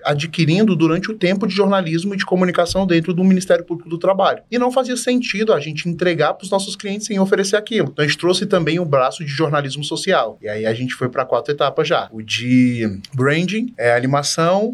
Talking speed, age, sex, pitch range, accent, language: 210 wpm, 20-39, male, 125-185 Hz, Brazilian, Portuguese